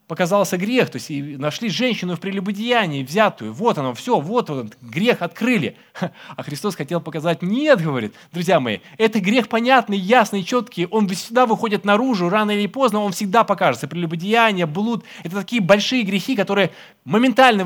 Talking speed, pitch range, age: 160 wpm, 160-225 Hz, 20-39